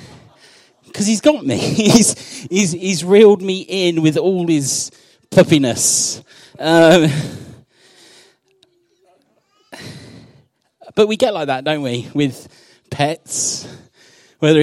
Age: 30-49